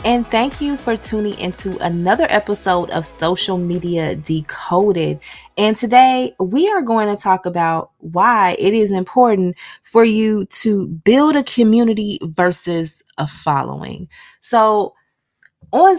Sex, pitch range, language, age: female, 165-230 Hz, English, 20-39